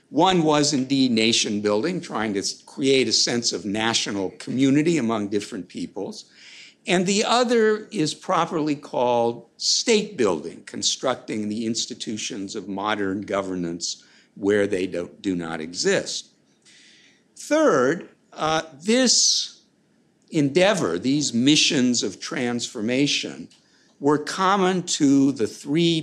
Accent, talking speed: American, 115 wpm